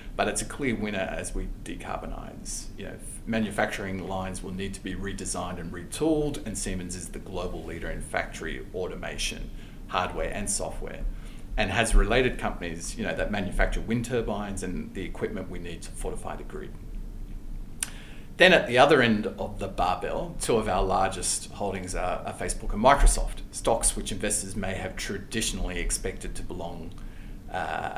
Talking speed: 160 wpm